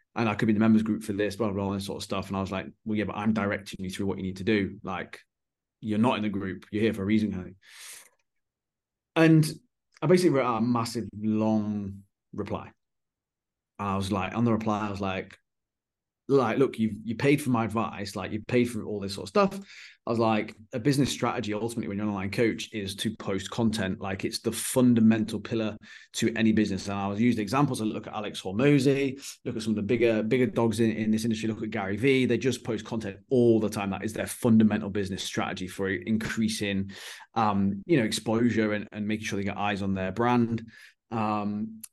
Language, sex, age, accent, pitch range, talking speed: English, male, 20-39, British, 105-120 Hz, 230 wpm